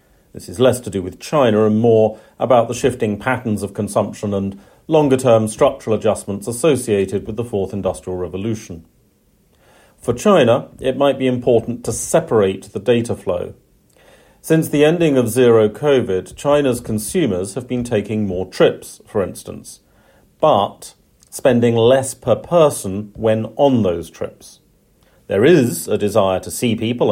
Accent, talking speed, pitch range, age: British, 150 wpm, 100-130 Hz, 40-59